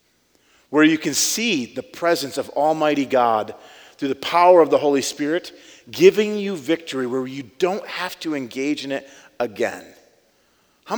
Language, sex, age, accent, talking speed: English, male, 40-59, American, 160 wpm